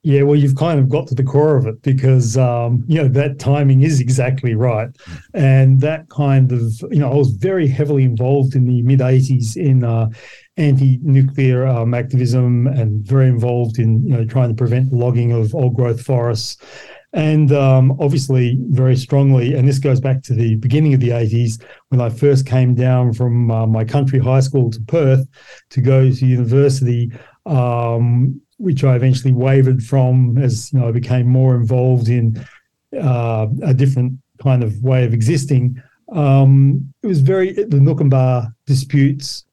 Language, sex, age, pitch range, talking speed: English, male, 40-59, 125-140 Hz, 175 wpm